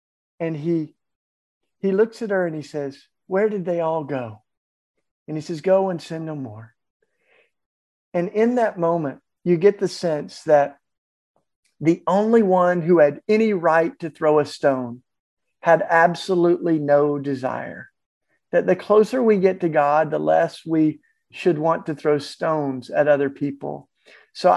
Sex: male